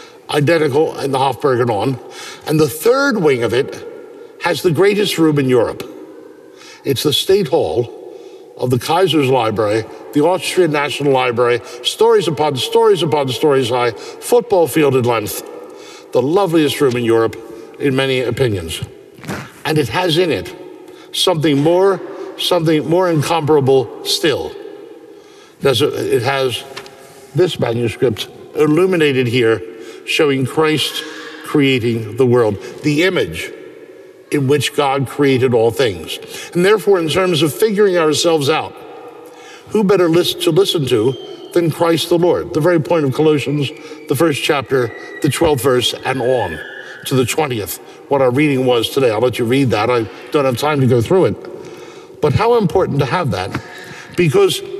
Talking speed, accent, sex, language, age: 150 wpm, American, male, English, 60-79